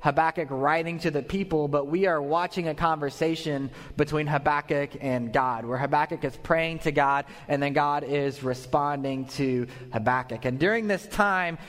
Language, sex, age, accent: English, male, 20-39, American